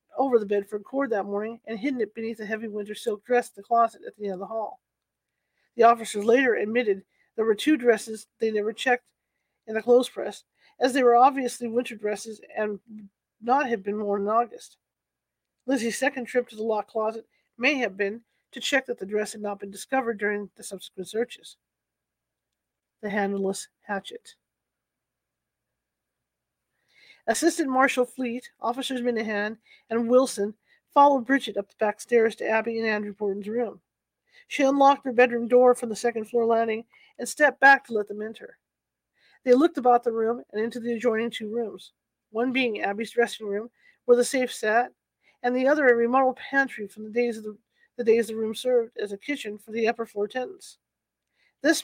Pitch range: 215-255 Hz